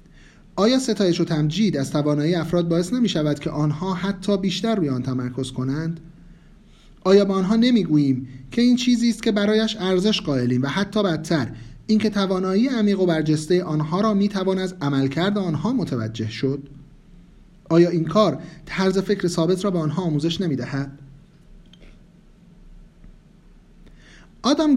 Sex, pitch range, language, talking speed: male, 150-200 Hz, Persian, 145 wpm